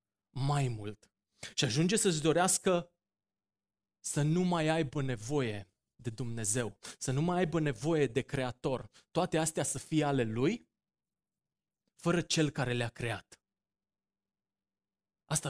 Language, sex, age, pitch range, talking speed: Romanian, male, 20-39, 120-155 Hz, 125 wpm